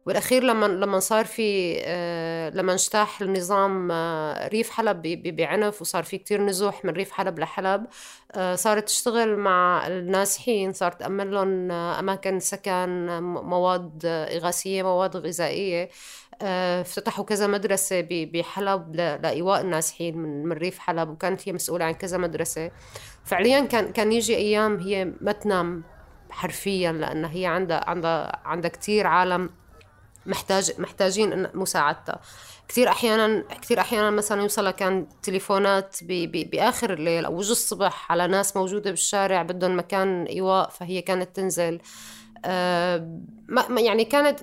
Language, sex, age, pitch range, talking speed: Arabic, female, 20-39, 170-205 Hz, 125 wpm